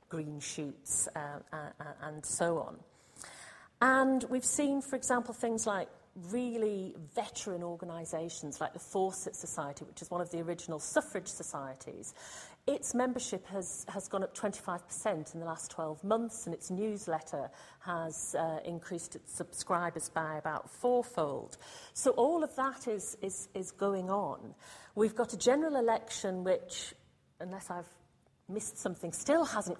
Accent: British